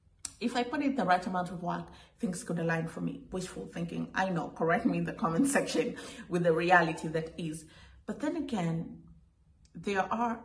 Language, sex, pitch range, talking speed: English, female, 175-240 Hz, 195 wpm